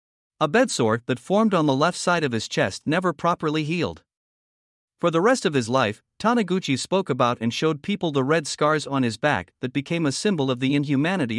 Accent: American